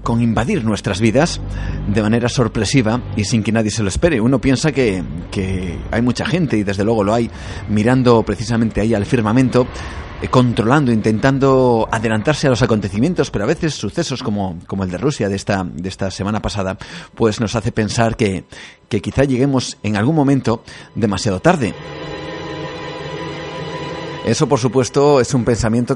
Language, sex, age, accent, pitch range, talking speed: Spanish, male, 30-49, Spanish, 100-130 Hz, 165 wpm